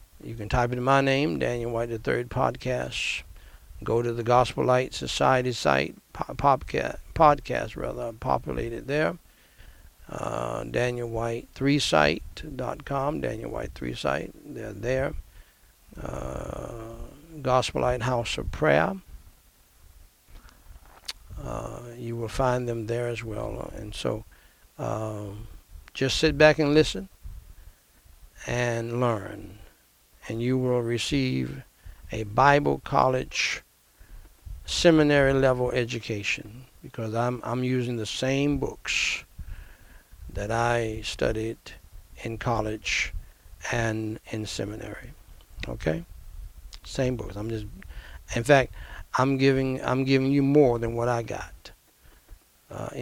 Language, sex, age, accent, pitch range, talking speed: English, male, 60-79, American, 85-125 Hz, 115 wpm